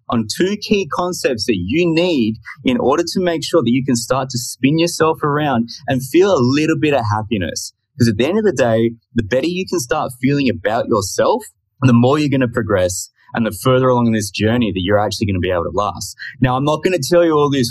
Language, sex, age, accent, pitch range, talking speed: English, male, 20-39, Australian, 110-145 Hz, 245 wpm